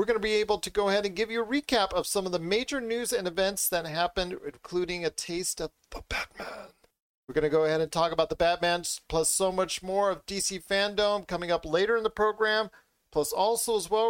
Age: 40-59